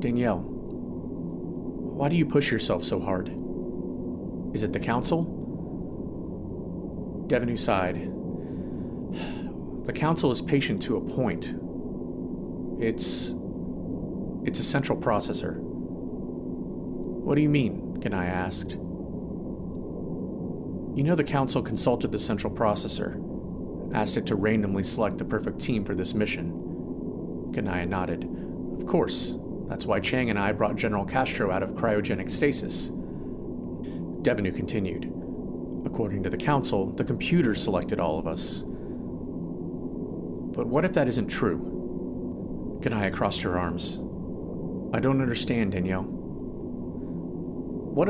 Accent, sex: American, male